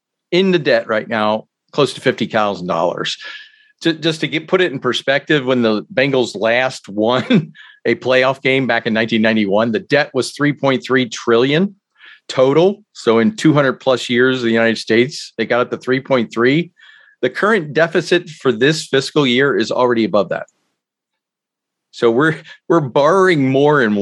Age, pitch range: 40-59, 115-160 Hz